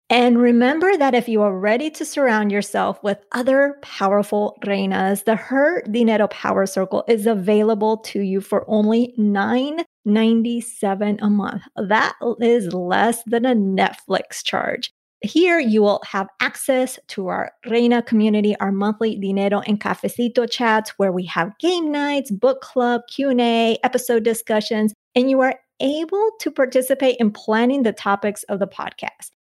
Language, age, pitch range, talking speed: English, 30-49, 200-250 Hz, 150 wpm